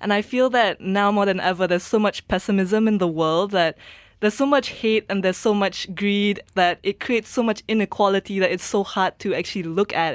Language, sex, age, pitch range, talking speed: English, female, 20-39, 180-220 Hz, 230 wpm